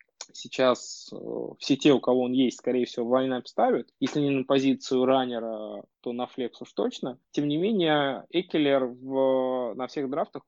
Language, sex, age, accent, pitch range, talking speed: Russian, male, 20-39, native, 115-140 Hz, 170 wpm